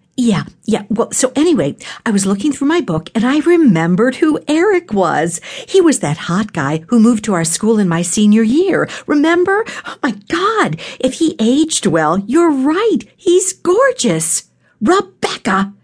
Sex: female